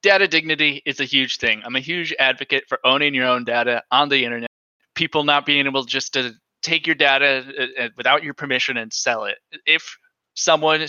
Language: English